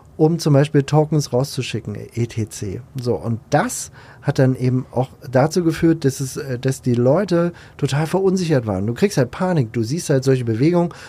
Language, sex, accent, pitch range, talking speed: German, male, German, 130-160 Hz, 175 wpm